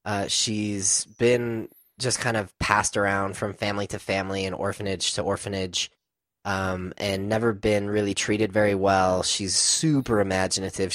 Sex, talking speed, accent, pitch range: male, 150 wpm, American, 90-105 Hz